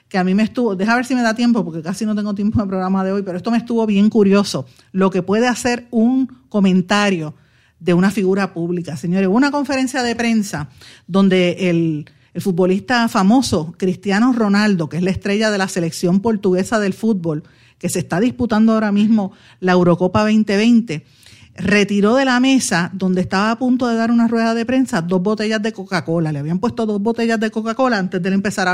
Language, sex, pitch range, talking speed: Spanish, female, 180-230 Hz, 205 wpm